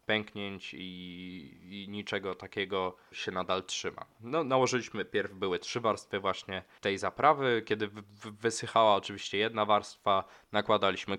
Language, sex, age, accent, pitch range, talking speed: Polish, male, 20-39, native, 95-115 Hz, 115 wpm